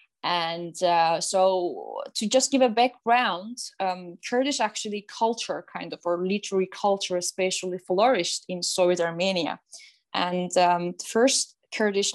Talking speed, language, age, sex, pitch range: 135 wpm, English, 20-39, female, 180-225 Hz